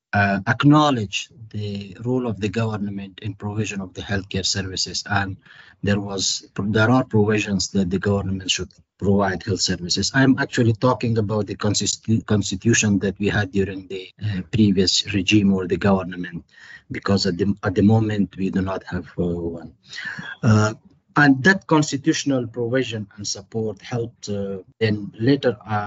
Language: English